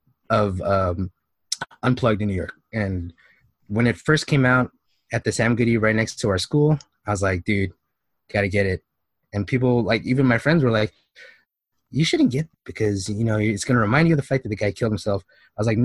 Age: 20-39